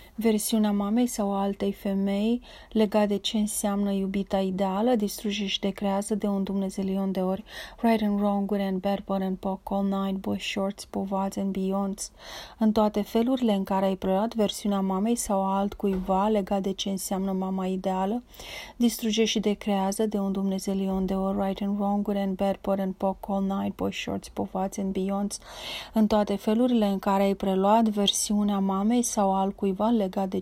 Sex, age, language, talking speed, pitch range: female, 30-49, Romanian, 170 wpm, 195-210 Hz